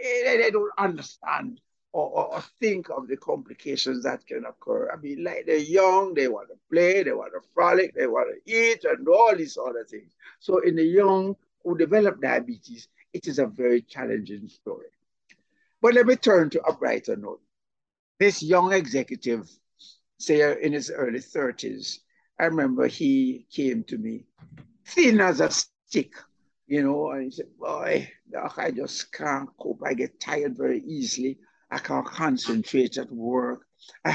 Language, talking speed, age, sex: English, 165 wpm, 60-79, male